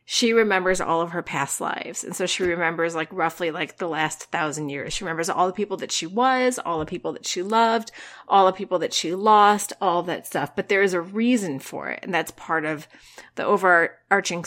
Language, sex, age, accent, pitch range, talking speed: English, female, 30-49, American, 155-195 Hz, 225 wpm